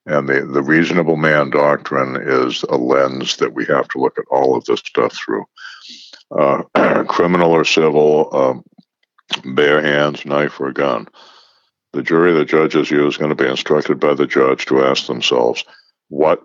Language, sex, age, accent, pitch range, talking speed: English, male, 60-79, American, 65-85 Hz, 170 wpm